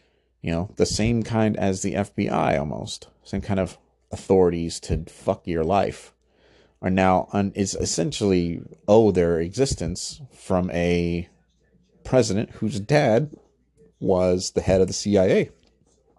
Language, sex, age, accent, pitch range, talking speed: English, male, 30-49, American, 85-105 Hz, 135 wpm